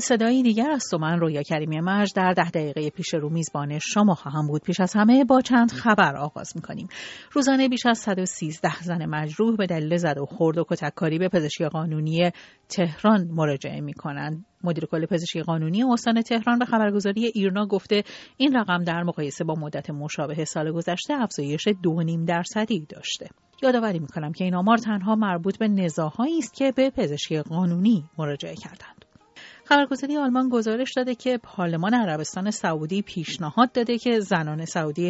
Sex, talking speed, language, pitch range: female, 170 wpm, Persian, 160-225 Hz